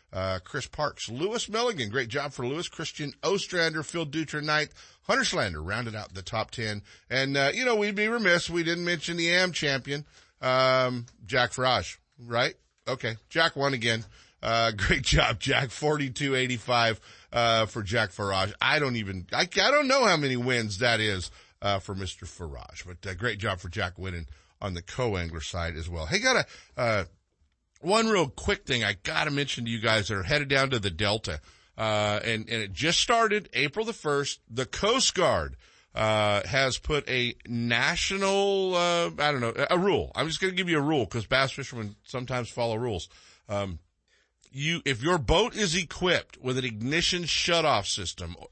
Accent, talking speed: American, 190 wpm